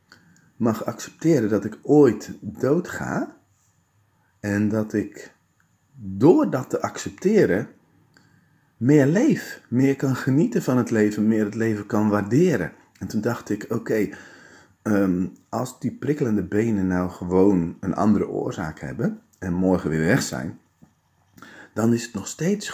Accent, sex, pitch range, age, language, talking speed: Dutch, male, 100-125 Hz, 40-59, Dutch, 135 wpm